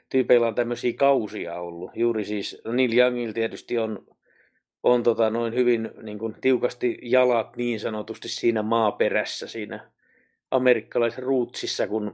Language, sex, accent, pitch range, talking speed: Finnish, male, native, 110-125 Hz, 125 wpm